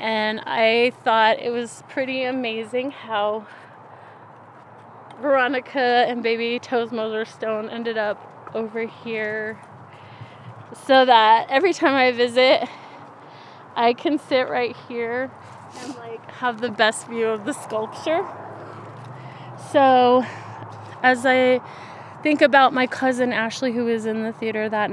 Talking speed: 125 wpm